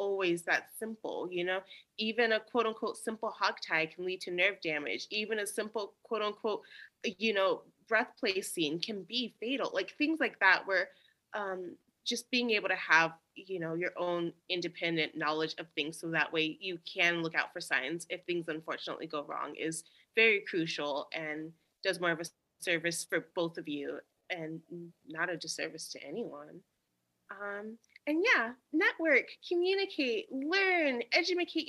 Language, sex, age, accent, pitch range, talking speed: English, female, 30-49, American, 165-225 Hz, 165 wpm